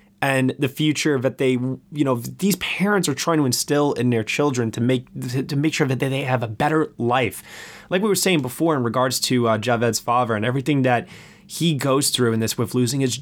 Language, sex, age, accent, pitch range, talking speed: English, male, 20-39, American, 120-165 Hz, 225 wpm